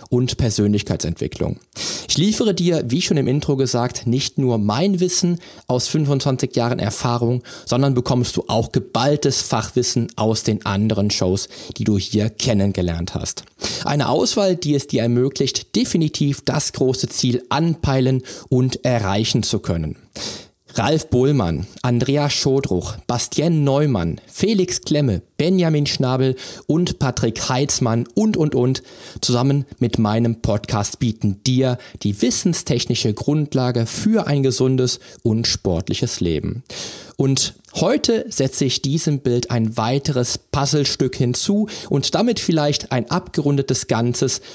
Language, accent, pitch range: German, German, 115-145 Hz